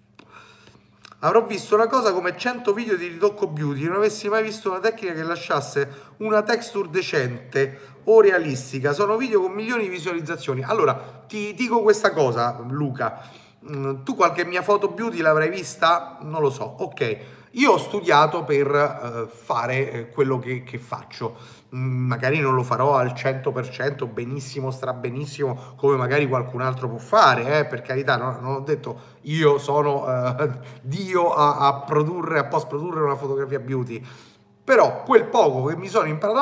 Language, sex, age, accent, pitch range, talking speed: Italian, male, 30-49, native, 130-185 Hz, 160 wpm